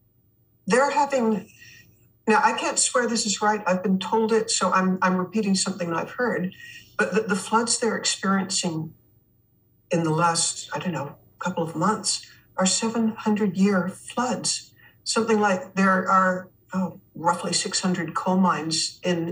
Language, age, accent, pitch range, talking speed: English, 60-79, American, 175-225 Hz, 150 wpm